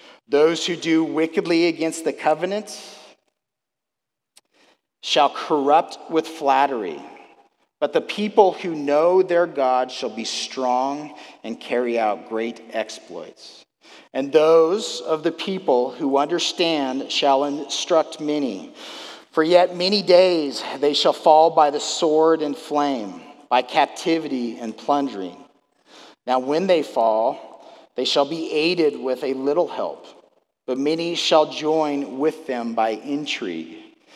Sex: male